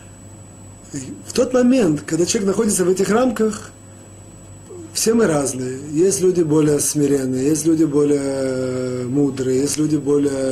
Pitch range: 130-195 Hz